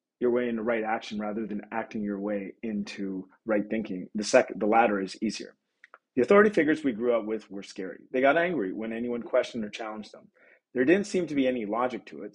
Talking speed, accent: 225 wpm, American